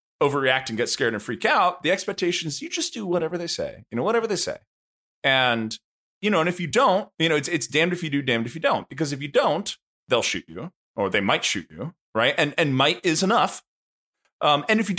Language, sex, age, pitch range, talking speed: English, male, 30-49, 115-180 Hz, 245 wpm